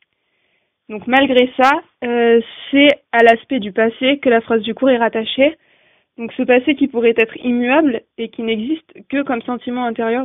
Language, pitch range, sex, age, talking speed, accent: French, 225-260 Hz, female, 20-39, 175 wpm, French